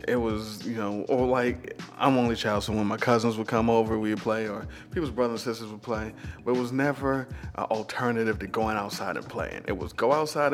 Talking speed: 230 wpm